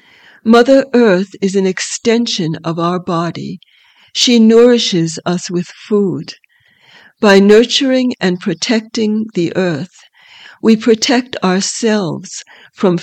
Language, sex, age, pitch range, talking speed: English, female, 60-79, 180-230 Hz, 105 wpm